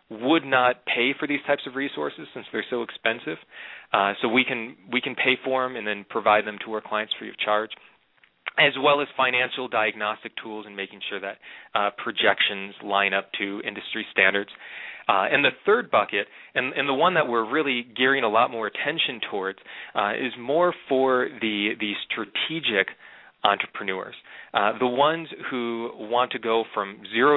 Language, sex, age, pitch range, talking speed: English, male, 30-49, 105-125 Hz, 180 wpm